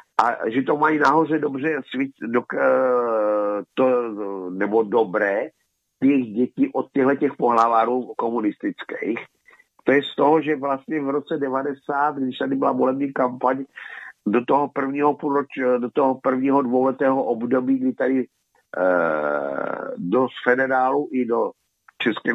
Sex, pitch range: male, 125-160 Hz